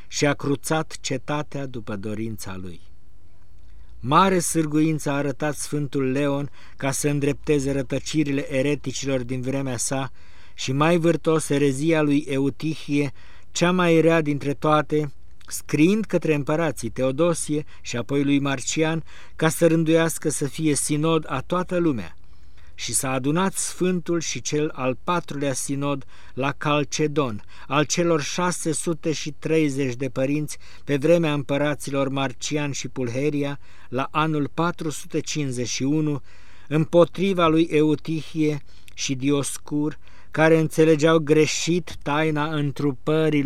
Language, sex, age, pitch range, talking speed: Romanian, male, 50-69, 130-155 Hz, 115 wpm